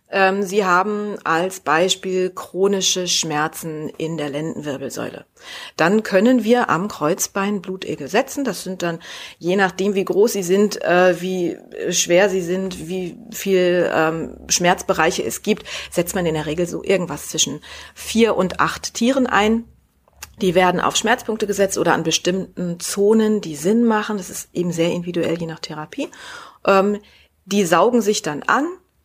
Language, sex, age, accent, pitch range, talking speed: German, female, 40-59, German, 170-210 Hz, 150 wpm